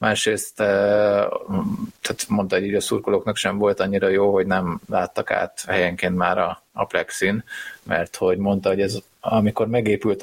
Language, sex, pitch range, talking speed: Hungarian, male, 100-120 Hz, 160 wpm